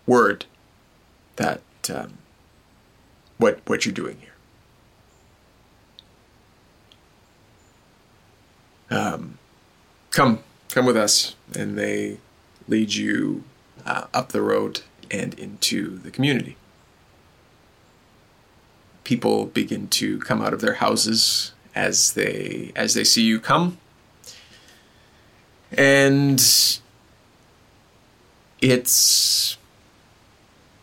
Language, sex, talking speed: English, male, 80 wpm